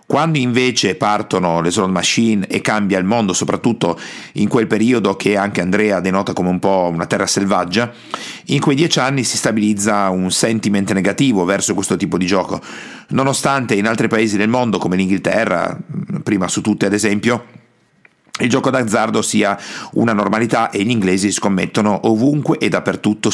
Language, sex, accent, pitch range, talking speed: Italian, male, native, 100-125 Hz, 165 wpm